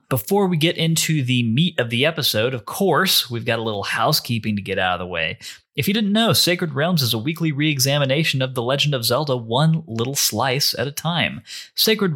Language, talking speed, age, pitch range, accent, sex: English, 215 wpm, 30-49, 115-160 Hz, American, male